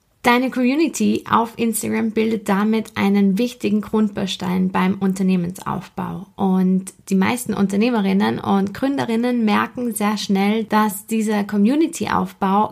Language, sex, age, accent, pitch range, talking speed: German, female, 20-39, German, 195-220 Hz, 110 wpm